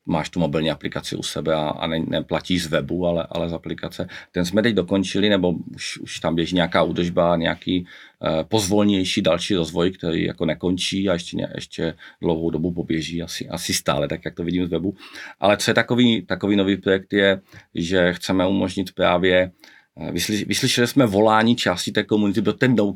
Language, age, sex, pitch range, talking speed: Czech, 40-59, male, 85-100 Hz, 190 wpm